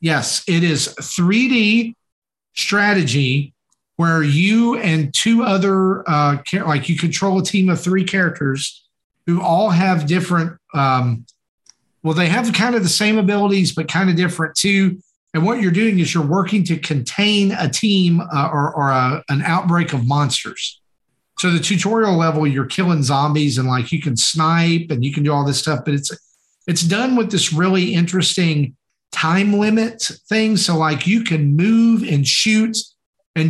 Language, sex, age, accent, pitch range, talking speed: English, male, 40-59, American, 145-185 Hz, 175 wpm